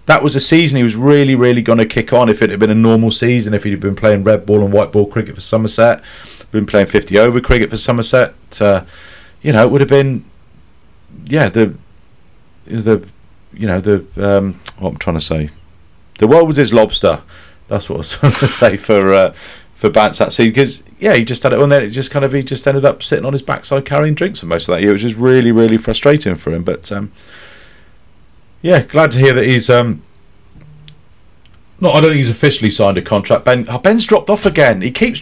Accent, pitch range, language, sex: British, 100-140 Hz, English, male